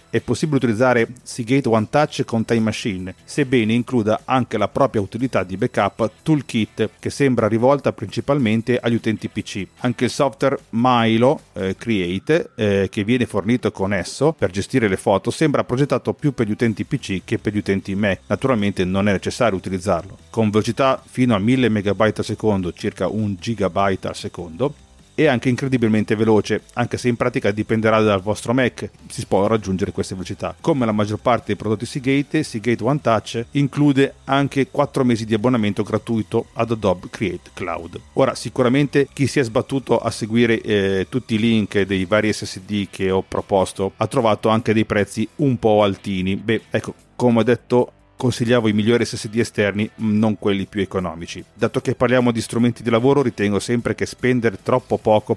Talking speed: 175 wpm